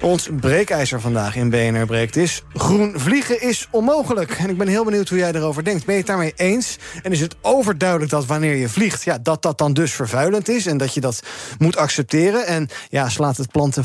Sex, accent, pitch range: male, Dutch, 125-175 Hz